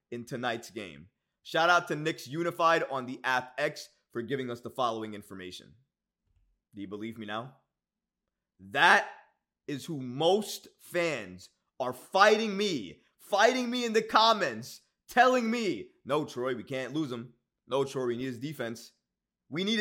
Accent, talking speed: American, 160 wpm